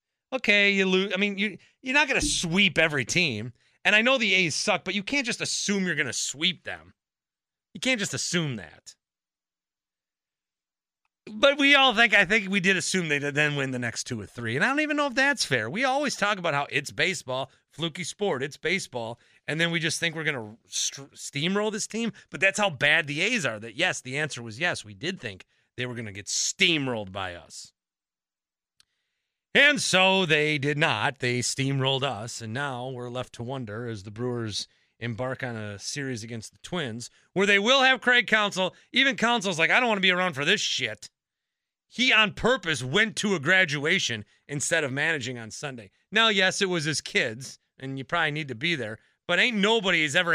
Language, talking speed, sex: English, 210 wpm, male